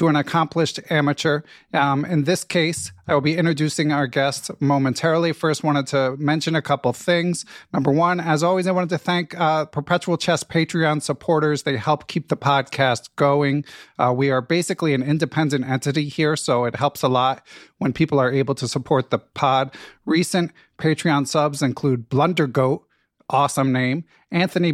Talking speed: 165 wpm